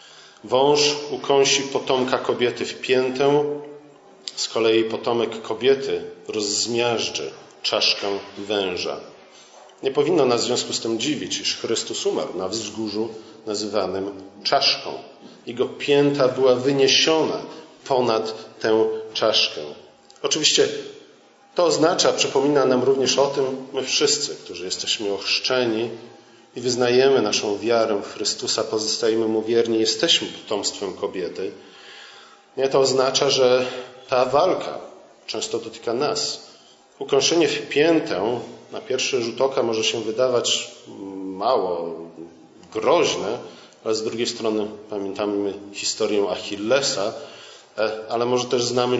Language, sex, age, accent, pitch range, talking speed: Polish, male, 40-59, native, 110-145 Hz, 115 wpm